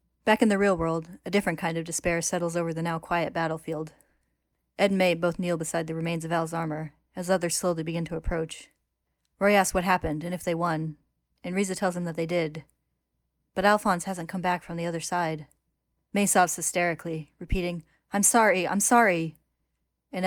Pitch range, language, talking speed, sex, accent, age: 160-185 Hz, English, 190 wpm, female, American, 10-29